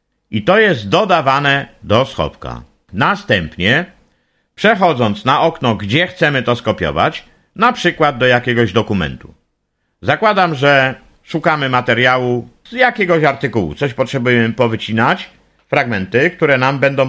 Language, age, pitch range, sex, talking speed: Polish, 50-69, 110-155 Hz, male, 115 wpm